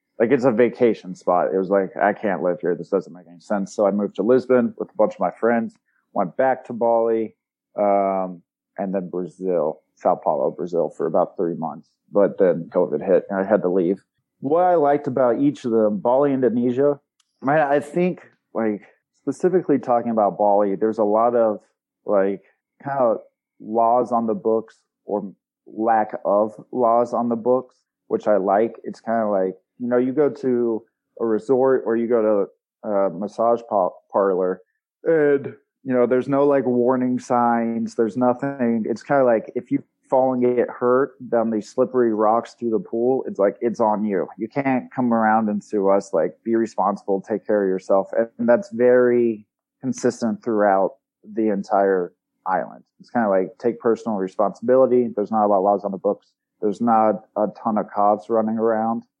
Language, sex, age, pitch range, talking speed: English, male, 30-49, 105-125 Hz, 185 wpm